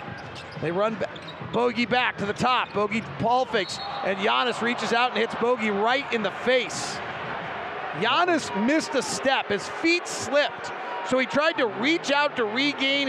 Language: English